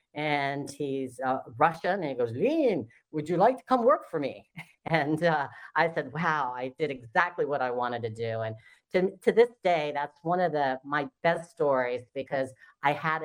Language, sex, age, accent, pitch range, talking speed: English, female, 40-59, American, 130-185 Hz, 200 wpm